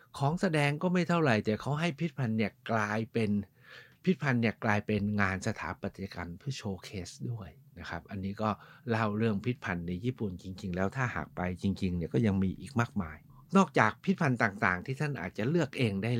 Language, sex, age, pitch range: Thai, male, 60-79, 105-150 Hz